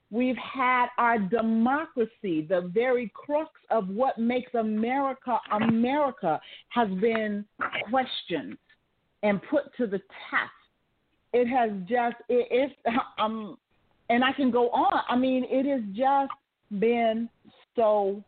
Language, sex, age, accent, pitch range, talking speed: English, female, 40-59, American, 205-260 Hz, 125 wpm